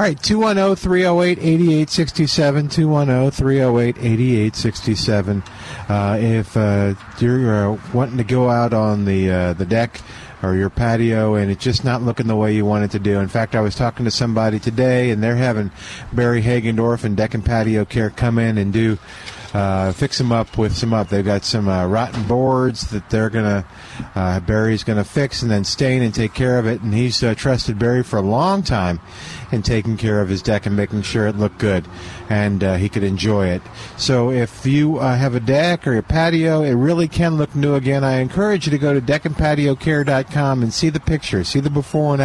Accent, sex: American, male